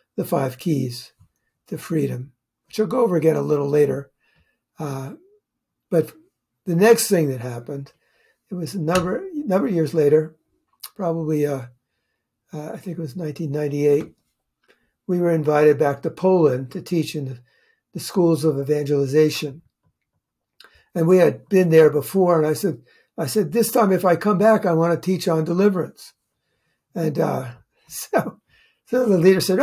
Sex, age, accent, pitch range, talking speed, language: male, 60-79, American, 155-200 Hz, 160 wpm, English